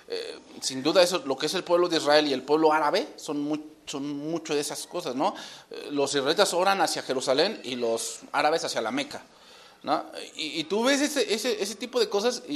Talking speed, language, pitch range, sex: 230 wpm, English, 120-155 Hz, male